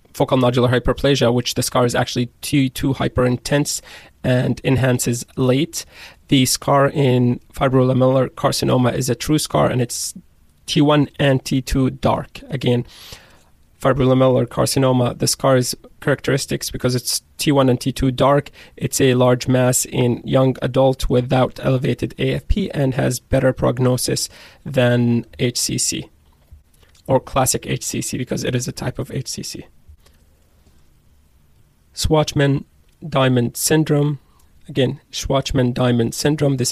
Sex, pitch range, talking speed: male, 120-140 Hz, 120 wpm